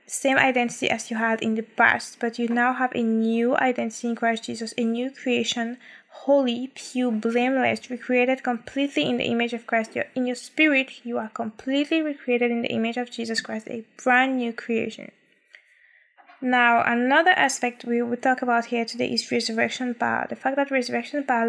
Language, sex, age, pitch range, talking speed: English, female, 10-29, 235-270 Hz, 180 wpm